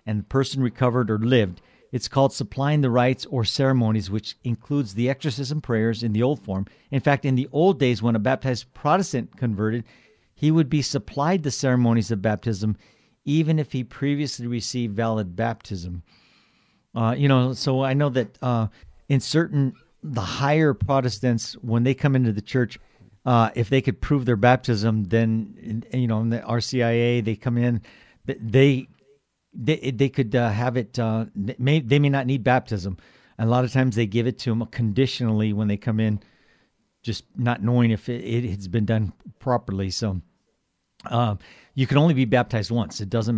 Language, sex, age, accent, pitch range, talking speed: English, male, 50-69, American, 110-130 Hz, 185 wpm